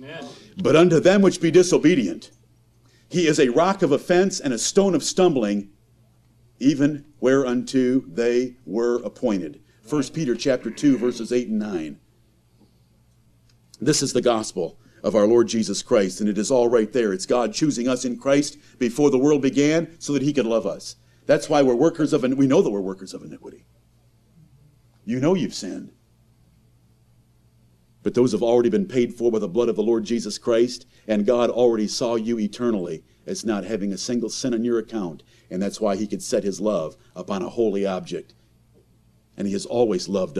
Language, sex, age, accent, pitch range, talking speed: English, male, 50-69, American, 105-130 Hz, 185 wpm